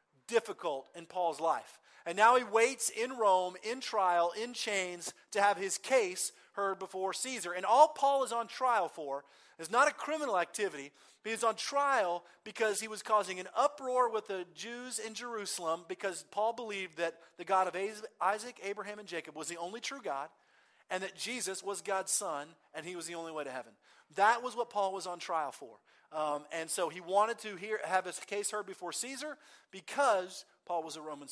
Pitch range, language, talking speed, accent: 170-230 Hz, English, 195 wpm, American